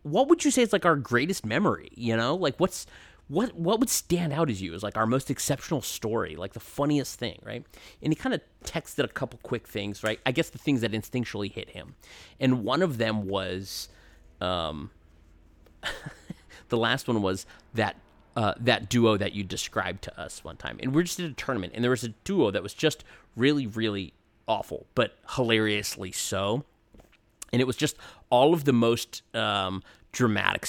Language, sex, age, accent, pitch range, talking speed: English, male, 30-49, American, 105-150 Hz, 200 wpm